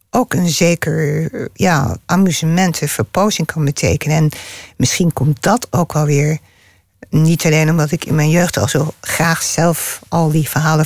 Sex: female